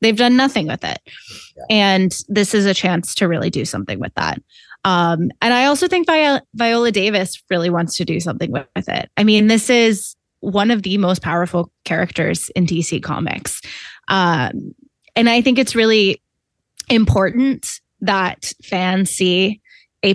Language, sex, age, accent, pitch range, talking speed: English, female, 20-39, American, 175-215 Hz, 160 wpm